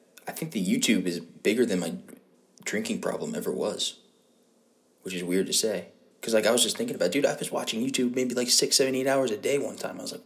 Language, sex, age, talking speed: English, male, 20-39, 245 wpm